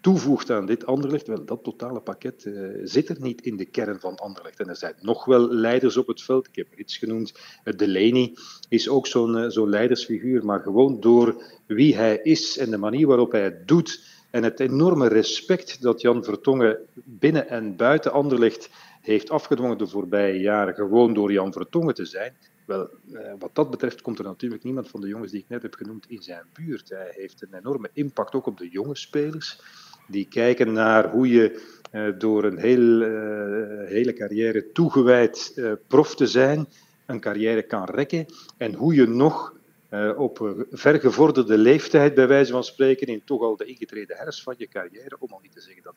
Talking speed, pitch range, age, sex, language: 195 wpm, 105-140 Hz, 40-59, male, Dutch